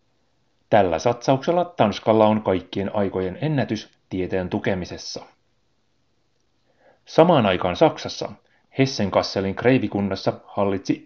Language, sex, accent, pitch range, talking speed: Finnish, male, native, 95-130 Hz, 80 wpm